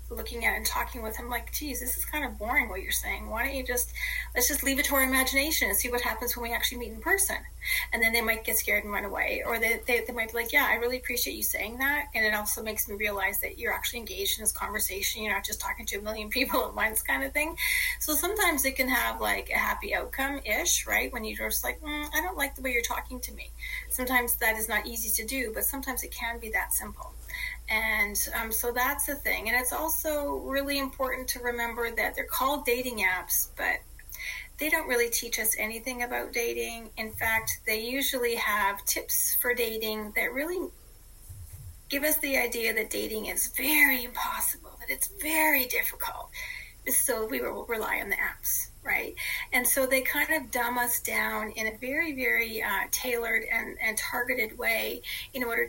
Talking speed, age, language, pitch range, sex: 220 wpm, 30-49, English, 225-280 Hz, female